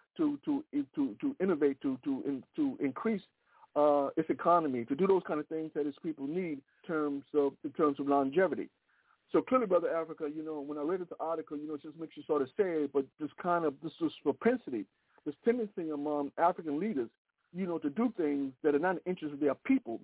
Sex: male